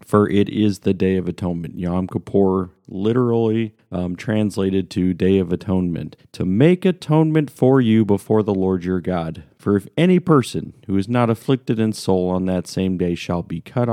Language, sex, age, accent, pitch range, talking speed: English, male, 40-59, American, 95-120 Hz, 185 wpm